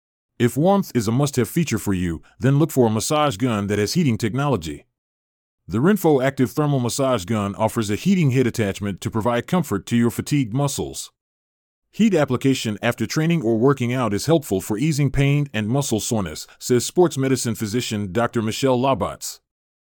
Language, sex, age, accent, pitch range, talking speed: English, male, 30-49, American, 105-140 Hz, 175 wpm